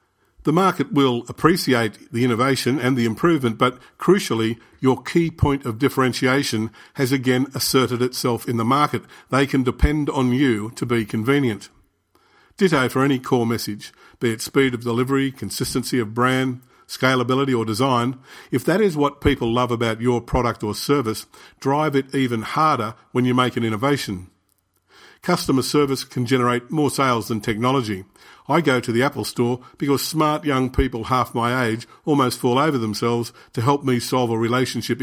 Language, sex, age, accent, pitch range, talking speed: English, male, 50-69, Australian, 115-140 Hz, 170 wpm